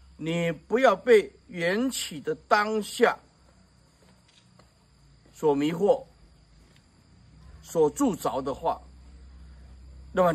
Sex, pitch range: male, 135-215 Hz